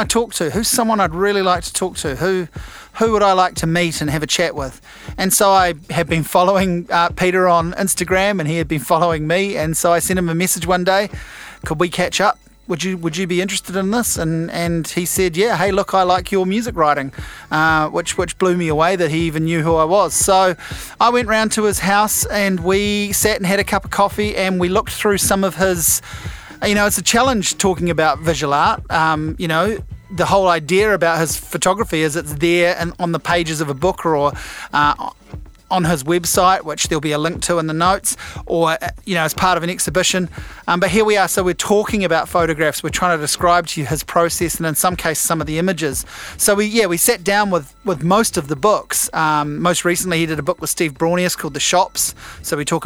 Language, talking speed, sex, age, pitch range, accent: English, 240 wpm, male, 30-49, 165-190 Hz, Australian